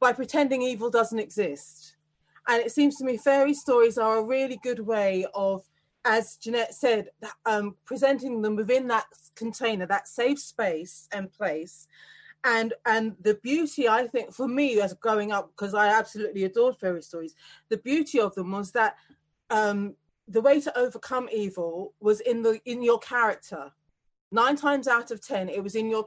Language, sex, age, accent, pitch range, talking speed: English, female, 30-49, British, 200-250 Hz, 175 wpm